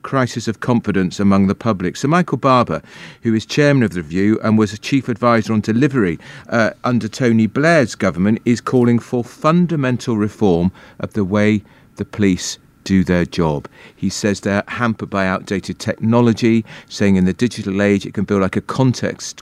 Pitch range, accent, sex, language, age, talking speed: 100-125 Hz, British, male, English, 40-59, 180 wpm